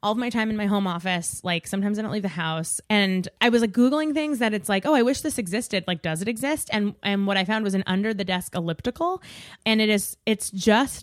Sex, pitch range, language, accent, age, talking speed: female, 190-235 Hz, English, American, 20-39, 260 wpm